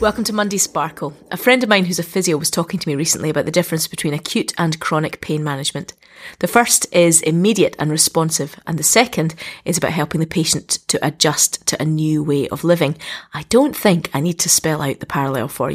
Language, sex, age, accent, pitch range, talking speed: English, female, 30-49, British, 155-190 Hz, 220 wpm